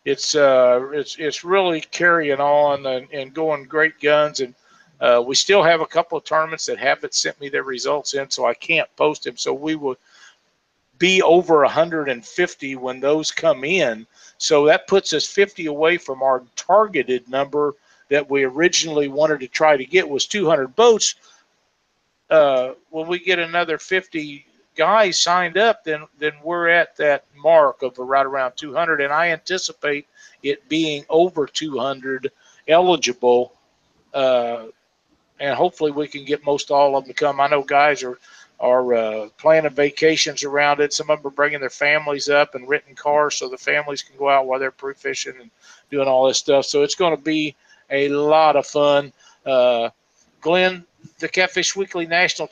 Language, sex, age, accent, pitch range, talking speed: English, male, 50-69, American, 140-170 Hz, 175 wpm